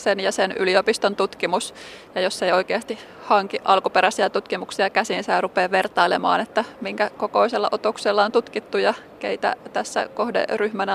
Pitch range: 185-225 Hz